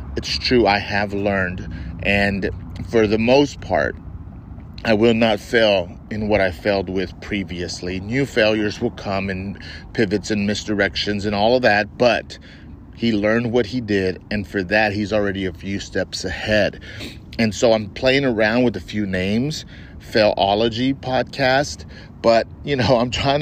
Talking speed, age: 165 wpm, 40-59